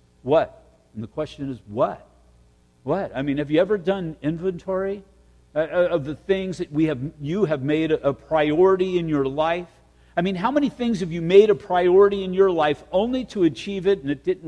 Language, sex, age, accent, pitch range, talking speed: English, male, 50-69, American, 130-190 Hz, 200 wpm